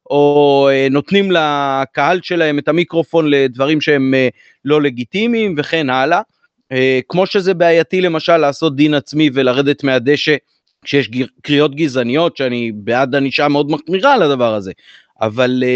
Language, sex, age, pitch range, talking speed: Hebrew, male, 30-49, 130-170 Hz, 130 wpm